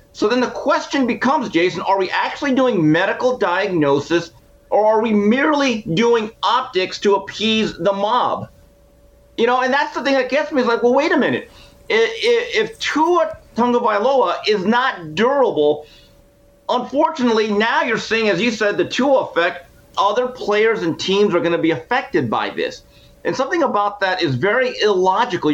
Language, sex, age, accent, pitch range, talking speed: English, male, 40-59, American, 165-255 Hz, 165 wpm